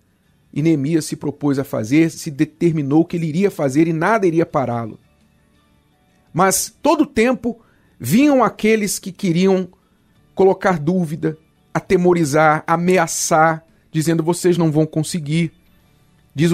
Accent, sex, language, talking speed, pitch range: Brazilian, male, Portuguese, 125 wpm, 120-185 Hz